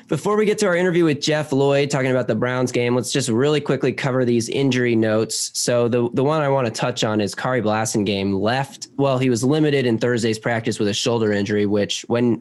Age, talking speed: 20-39, 230 wpm